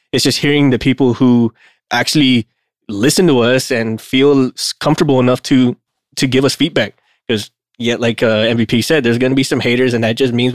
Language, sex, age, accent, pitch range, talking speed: English, male, 20-39, American, 115-135 Hz, 200 wpm